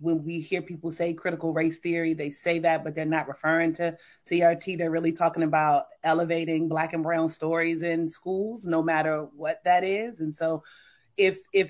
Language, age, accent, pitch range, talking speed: English, 30-49, American, 160-180 Hz, 190 wpm